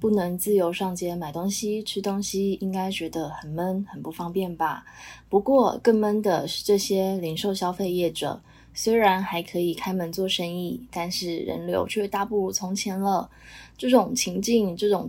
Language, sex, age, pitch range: Chinese, female, 20-39, 175-220 Hz